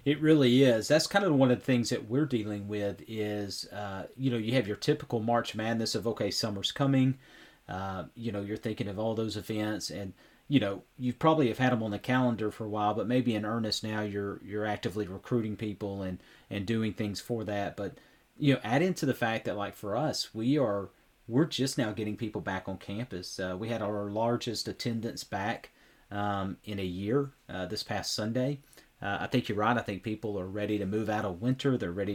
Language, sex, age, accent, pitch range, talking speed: English, male, 40-59, American, 105-125 Hz, 225 wpm